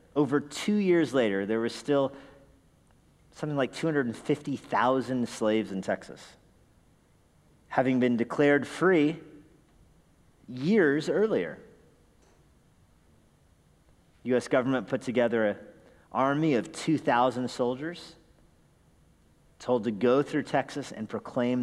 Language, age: English, 40-59